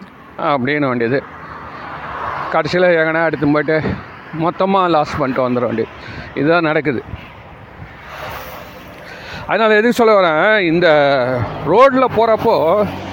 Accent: native